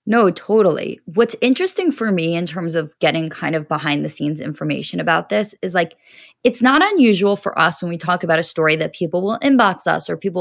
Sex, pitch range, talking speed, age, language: female, 165-200 Hz, 220 wpm, 20-39, English